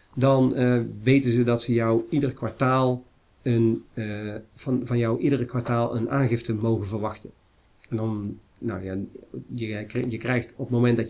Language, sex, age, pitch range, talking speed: Dutch, male, 40-59, 115-130 Hz, 170 wpm